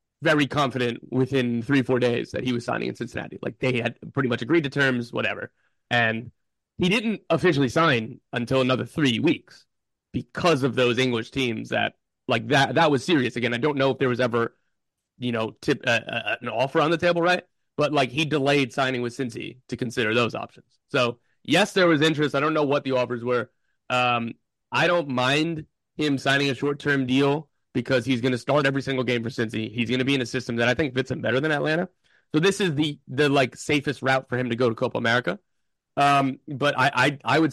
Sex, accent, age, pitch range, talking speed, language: male, American, 30-49, 120-145 Hz, 220 wpm, English